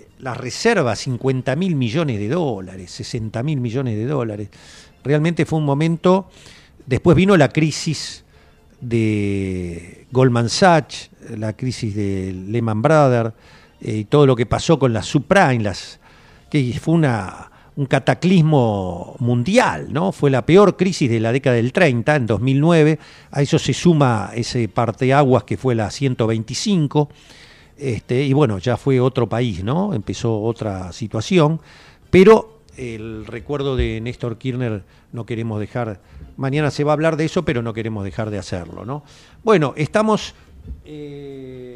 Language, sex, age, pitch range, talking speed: Spanish, male, 50-69, 110-155 Hz, 150 wpm